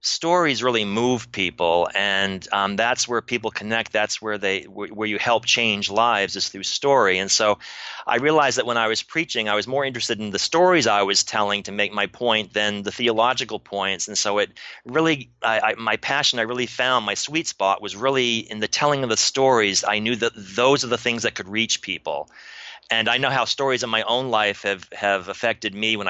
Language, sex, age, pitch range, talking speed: English, male, 30-49, 100-120 Hz, 220 wpm